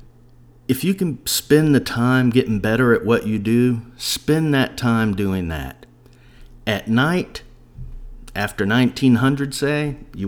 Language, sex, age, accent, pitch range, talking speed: English, male, 50-69, American, 95-125 Hz, 135 wpm